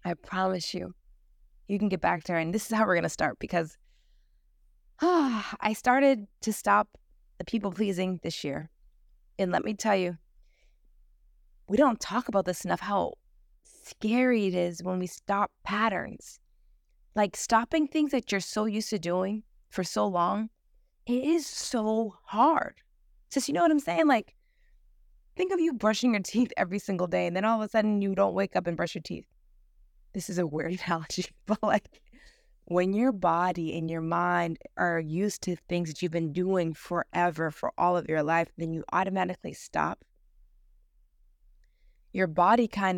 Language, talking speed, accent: English, 175 wpm, American